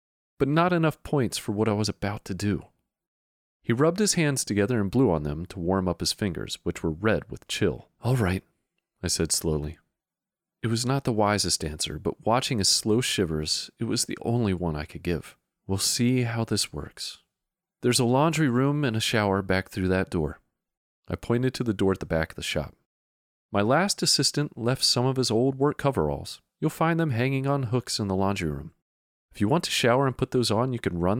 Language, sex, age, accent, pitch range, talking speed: English, male, 30-49, American, 90-125 Hz, 215 wpm